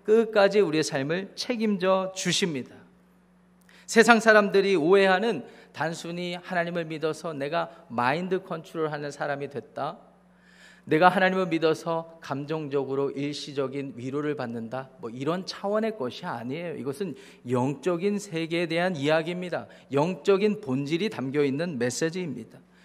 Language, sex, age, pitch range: Korean, male, 40-59, 145-205 Hz